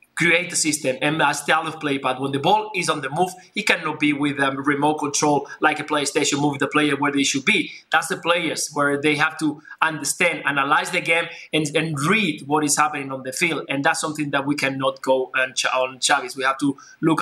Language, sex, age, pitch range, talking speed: English, male, 20-39, 140-165 Hz, 230 wpm